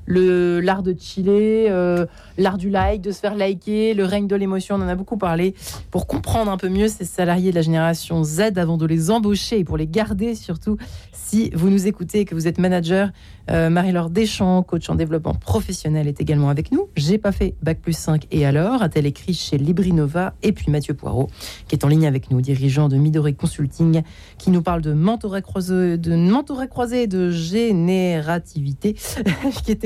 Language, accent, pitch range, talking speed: French, French, 165-210 Hz, 195 wpm